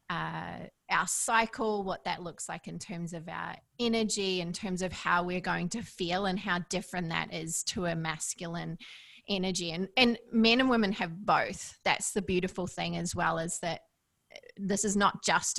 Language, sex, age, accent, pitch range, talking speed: English, female, 20-39, Australian, 175-210 Hz, 185 wpm